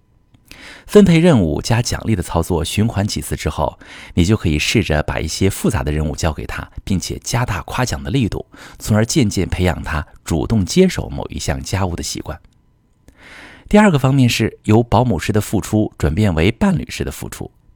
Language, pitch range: Chinese, 85-120 Hz